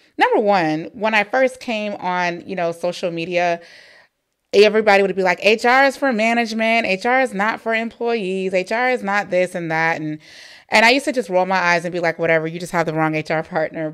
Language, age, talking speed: English, 30-49, 215 wpm